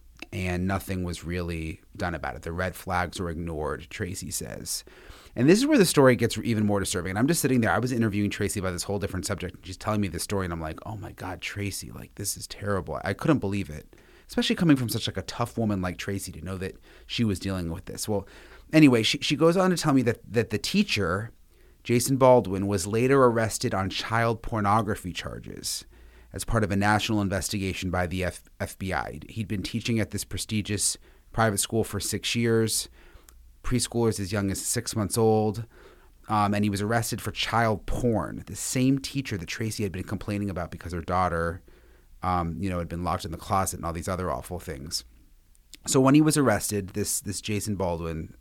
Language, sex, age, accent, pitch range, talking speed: English, male, 30-49, American, 90-115 Hz, 210 wpm